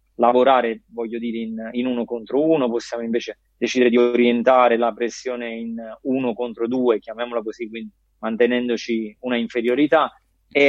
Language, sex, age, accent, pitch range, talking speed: Italian, male, 20-39, native, 115-130 Hz, 145 wpm